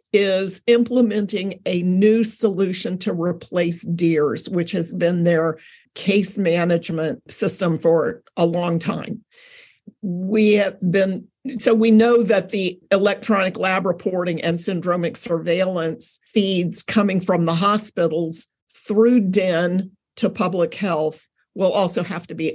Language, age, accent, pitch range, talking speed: English, 50-69, American, 175-225 Hz, 130 wpm